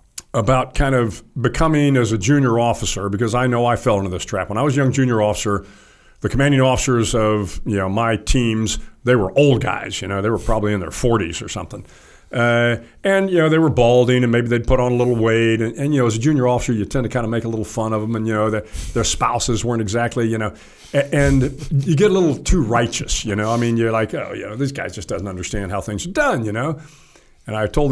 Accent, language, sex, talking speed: American, English, male, 260 wpm